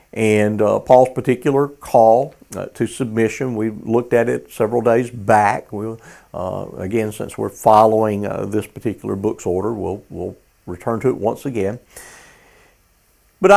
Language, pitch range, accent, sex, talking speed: English, 95-125 Hz, American, male, 150 wpm